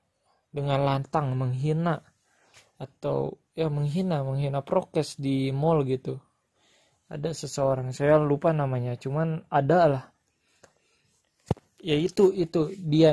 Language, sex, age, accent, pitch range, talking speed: Indonesian, male, 20-39, native, 135-170 Hz, 105 wpm